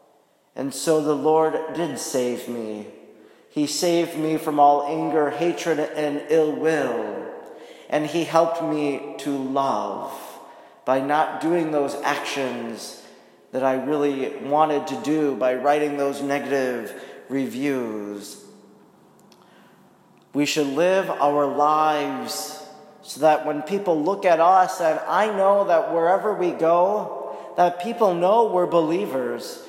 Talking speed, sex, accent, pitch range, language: 125 wpm, male, American, 145-180 Hz, English